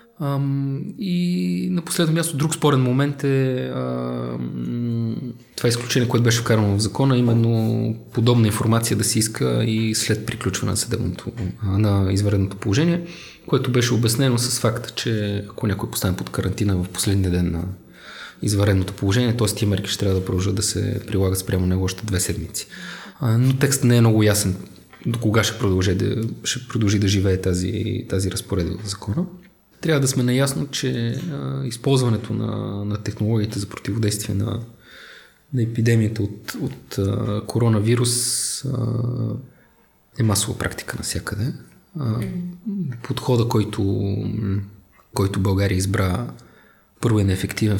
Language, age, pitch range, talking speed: Bulgarian, 20-39, 100-125 Hz, 140 wpm